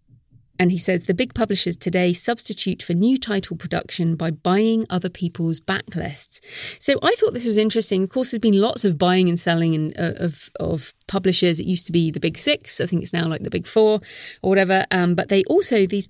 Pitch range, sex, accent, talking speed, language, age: 170-215 Hz, female, British, 215 wpm, English, 30-49